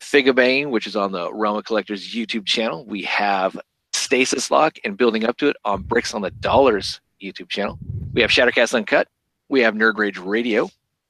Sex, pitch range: male, 100-130 Hz